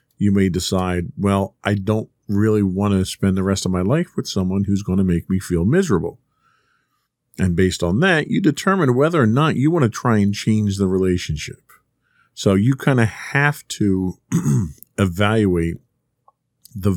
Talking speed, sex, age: 175 wpm, male, 40-59